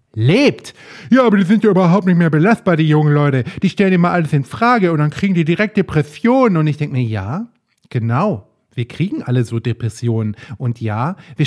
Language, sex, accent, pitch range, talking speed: German, male, German, 150-195 Hz, 205 wpm